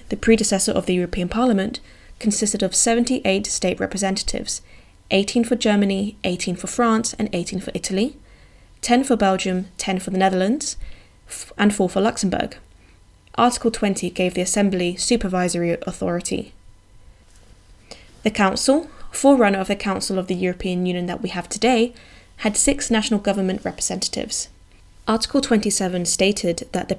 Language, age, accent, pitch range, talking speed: English, 10-29, British, 185-225 Hz, 140 wpm